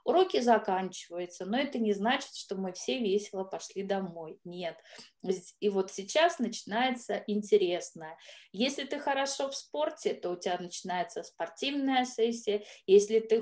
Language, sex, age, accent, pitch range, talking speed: Russian, female, 20-39, native, 185-240 Hz, 140 wpm